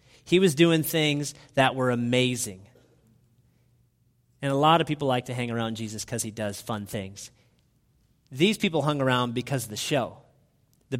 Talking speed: 170 wpm